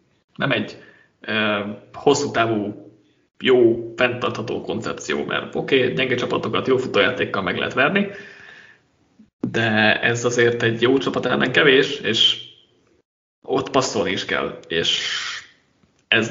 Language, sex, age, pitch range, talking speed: Hungarian, male, 20-39, 120-170 Hz, 125 wpm